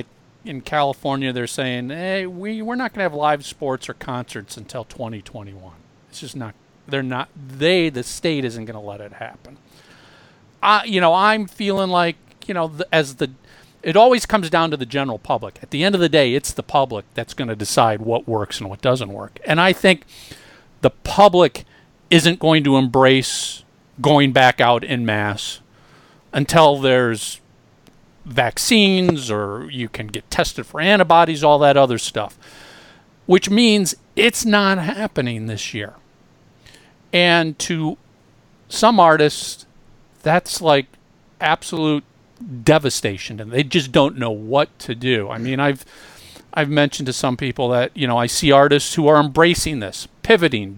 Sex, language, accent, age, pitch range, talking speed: male, English, American, 50-69, 125-175 Hz, 160 wpm